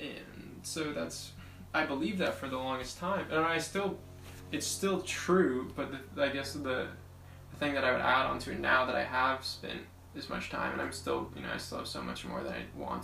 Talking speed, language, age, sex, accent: 240 wpm, English, 10-29, male, American